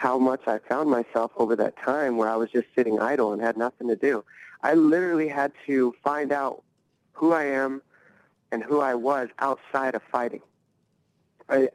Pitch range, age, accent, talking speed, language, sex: 115-135 Hz, 30-49, American, 185 wpm, English, male